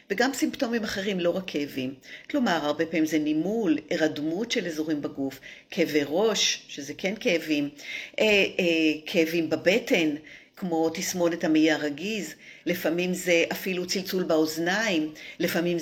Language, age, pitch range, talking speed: Hebrew, 50-69, 160-205 Hz, 130 wpm